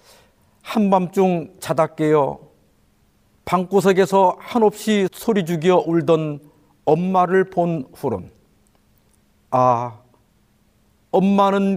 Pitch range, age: 130-195 Hz, 50-69